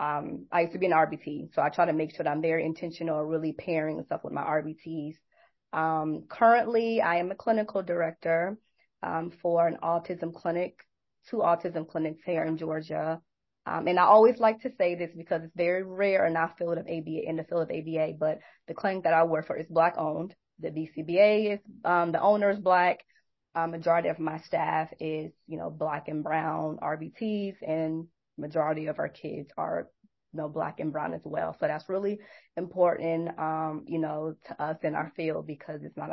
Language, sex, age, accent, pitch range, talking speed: English, female, 20-39, American, 160-195 Hz, 200 wpm